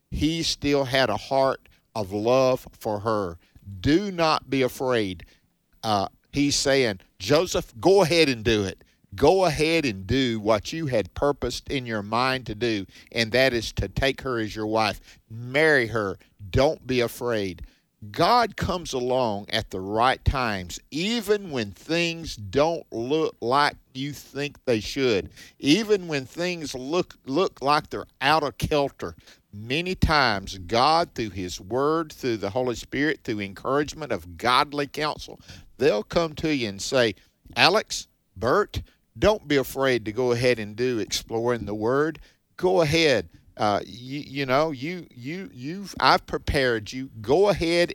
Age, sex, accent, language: 50-69, male, American, English